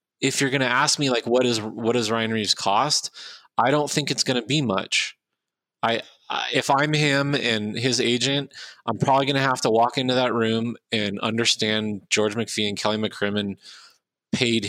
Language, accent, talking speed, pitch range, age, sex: English, American, 195 wpm, 110-135 Hz, 20-39, male